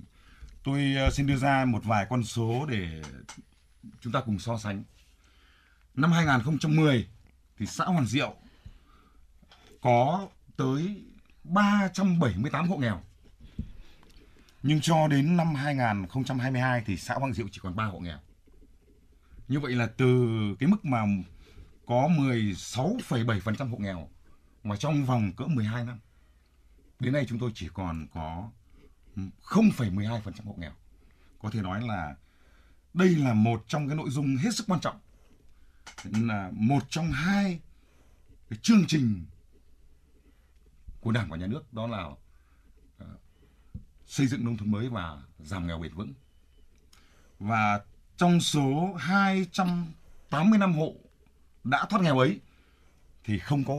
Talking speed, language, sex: 135 wpm, Vietnamese, male